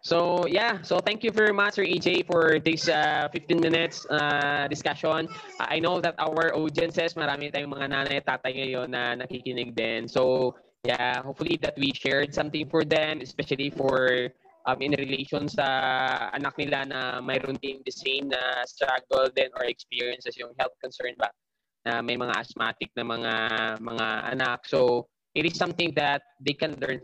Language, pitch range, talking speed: English, 125-160 Hz, 175 wpm